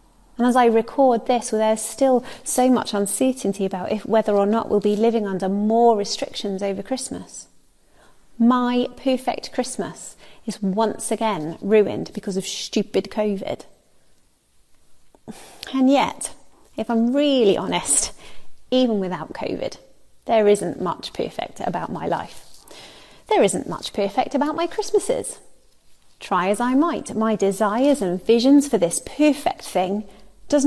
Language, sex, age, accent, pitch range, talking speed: English, female, 30-49, British, 210-280 Hz, 135 wpm